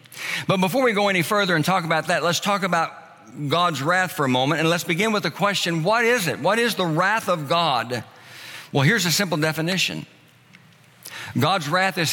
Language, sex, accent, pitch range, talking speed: English, male, American, 135-175 Hz, 205 wpm